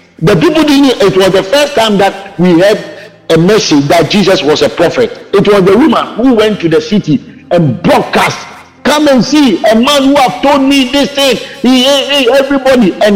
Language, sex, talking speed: English, male, 200 wpm